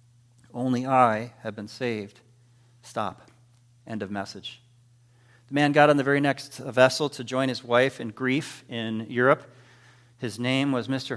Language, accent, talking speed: English, American, 155 wpm